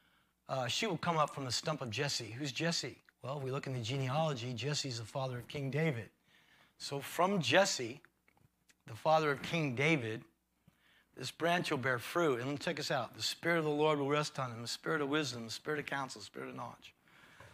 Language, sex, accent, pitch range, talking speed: English, male, American, 130-160 Hz, 210 wpm